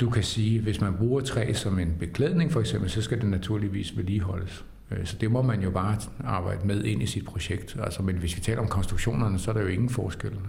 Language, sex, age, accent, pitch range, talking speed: Danish, male, 60-79, native, 95-110 Hz, 240 wpm